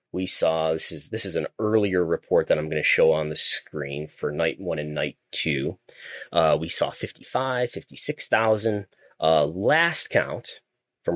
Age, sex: 30-49, male